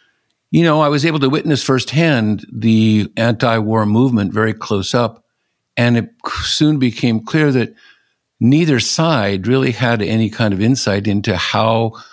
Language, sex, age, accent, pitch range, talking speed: English, male, 50-69, American, 105-125 Hz, 150 wpm